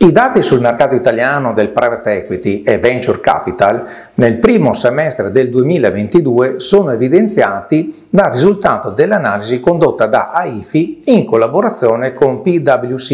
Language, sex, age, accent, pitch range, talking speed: Italian, male, 40-59, native, 120-190 Hz, 130 wpm